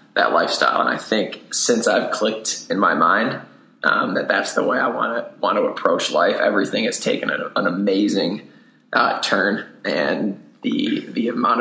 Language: English